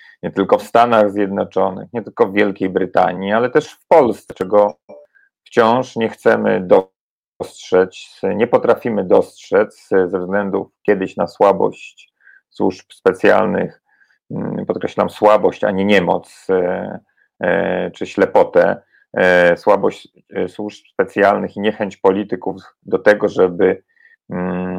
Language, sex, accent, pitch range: Polish, male, native, 95-130 Hz